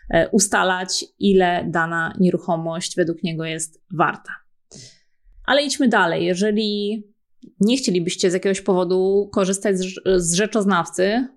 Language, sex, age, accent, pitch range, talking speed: Polish, female, 20-39, native, 190-225 Hz, 105 wpm